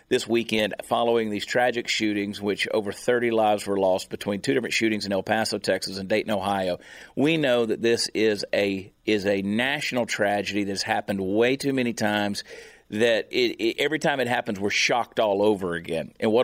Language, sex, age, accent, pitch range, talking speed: English, male, 40-59, American, 105-140 Hz, 185 wpm